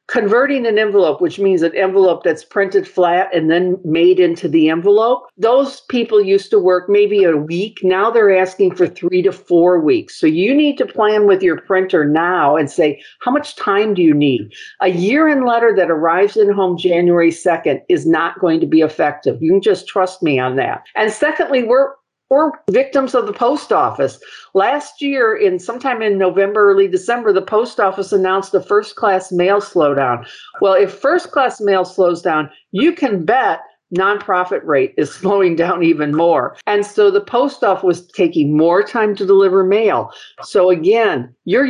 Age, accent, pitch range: 50-69, American, 175-245 Hz